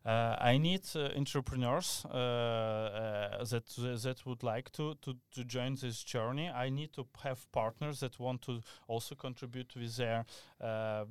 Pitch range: 115-130 Hz